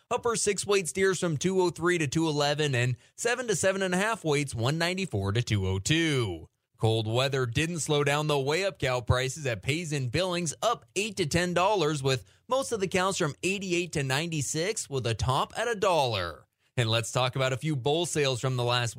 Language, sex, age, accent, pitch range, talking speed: English, male, 20-39, American, 125-175 Hz, 200 wpm